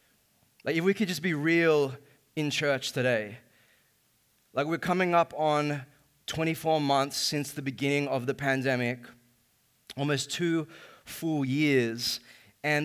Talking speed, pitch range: 130 wpm, 140-175 Hz